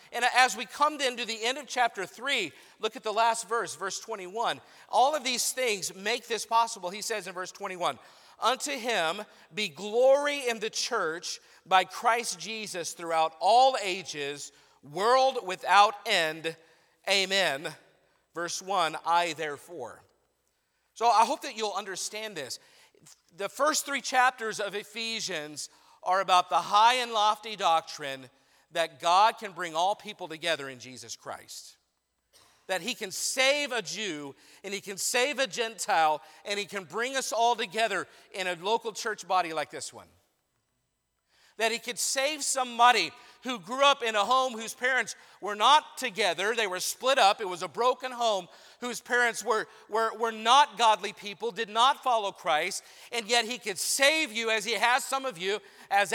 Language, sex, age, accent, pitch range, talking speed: English, male, 50-69, American, 185-250 Hz, 170 wpm